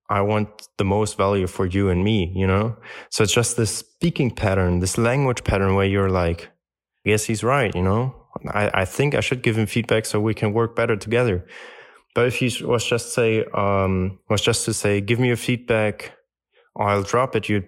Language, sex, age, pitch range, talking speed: English, male, 20-39, 95-115 Hz, 205 wpm